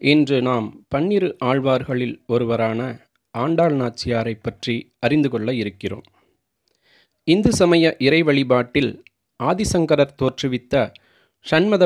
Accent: native